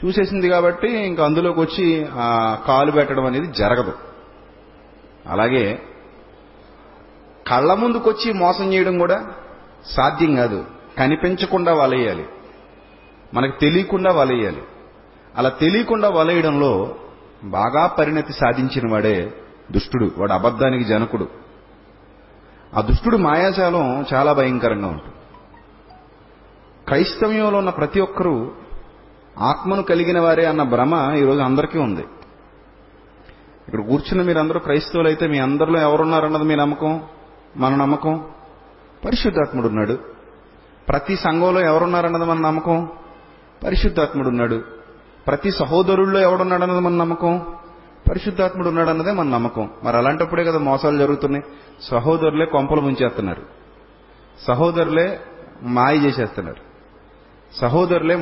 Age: 30-49